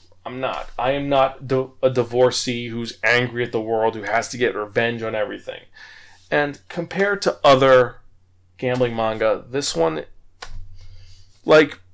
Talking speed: 140 wpm